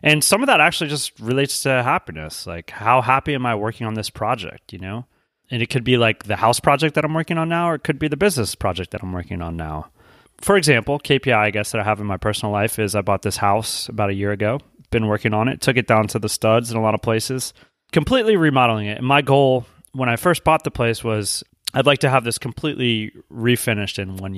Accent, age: American, 30-49